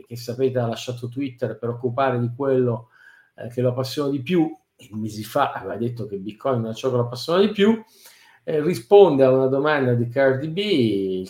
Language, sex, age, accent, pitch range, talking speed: Italian, male, 50-69, native, 120-140 Hz, 205 wpm